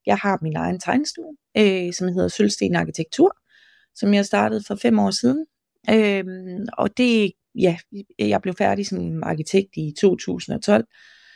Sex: female